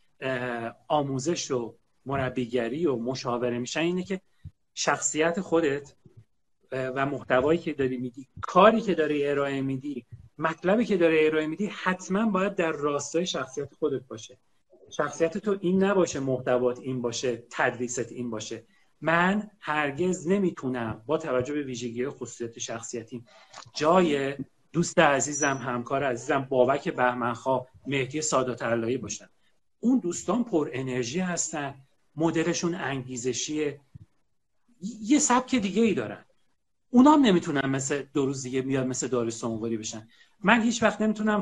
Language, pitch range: Persian, 125-170 Hz